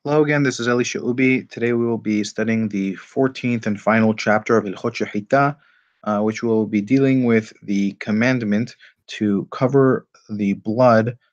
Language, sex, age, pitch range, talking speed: English, male, 30-49, 105-130 Hz, 165 wpm